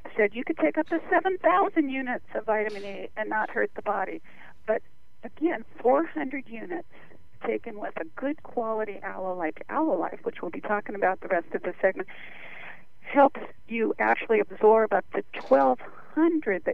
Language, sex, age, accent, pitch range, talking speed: English, female, 50-69, American, 215-275 Hz, 160 wpm